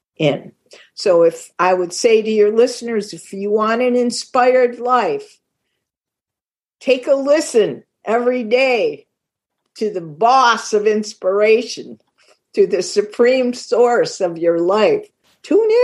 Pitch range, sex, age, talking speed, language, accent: 195-275 Hz, female, 50-69, 125 wpm, English, American